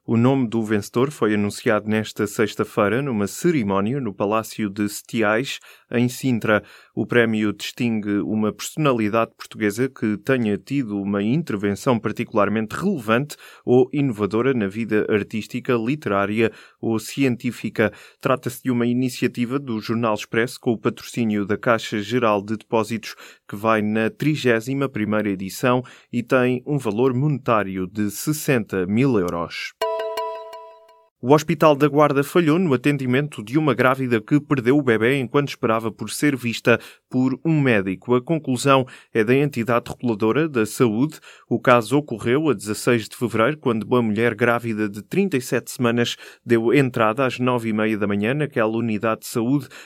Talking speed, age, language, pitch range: 145 wpm, 20-39, Portuguese, 110-135 Hz